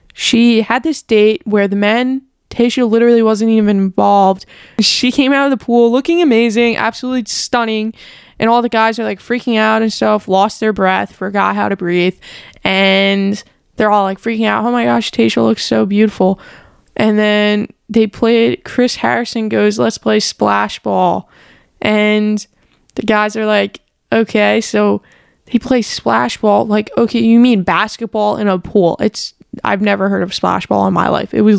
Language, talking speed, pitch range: English, 180 wpm, 200-235 Hz